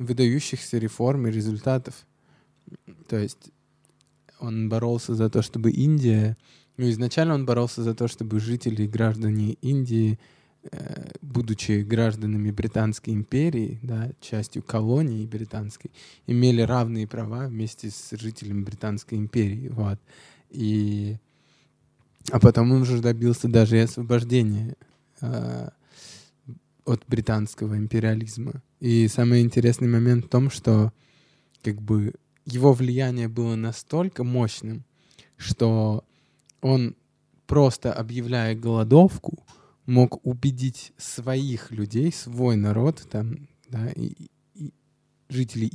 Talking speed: 105 wpm